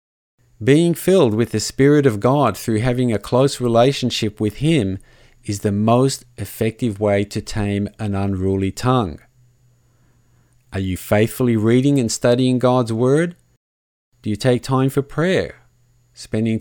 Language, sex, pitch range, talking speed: English, male, 105-125 Hz, 140 wpm